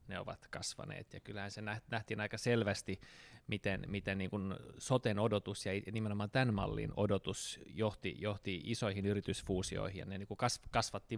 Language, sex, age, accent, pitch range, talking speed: Finnish, male, 20-39, native, 100-115 Hz, 135 wpm